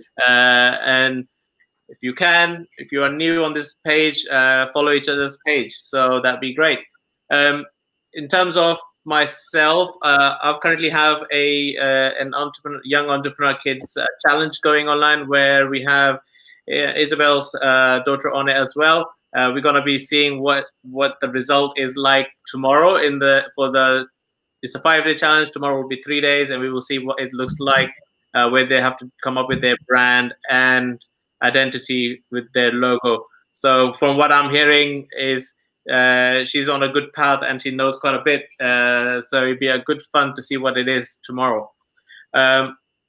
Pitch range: 130-150 Hz